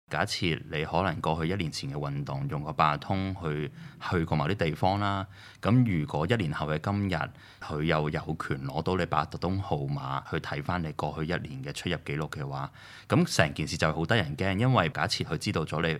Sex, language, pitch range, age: male, Chinese, 80-115 Hz, 20-39